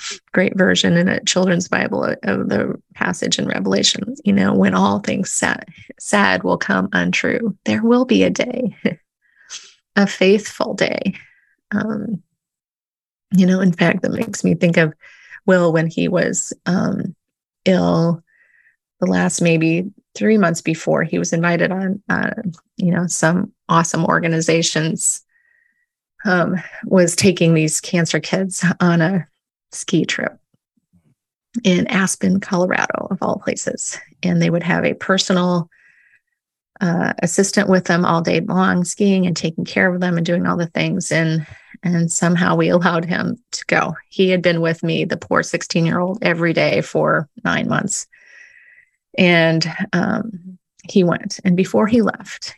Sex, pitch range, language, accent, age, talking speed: female, 170-205 Hz, English, American, 20-39, 150 wpm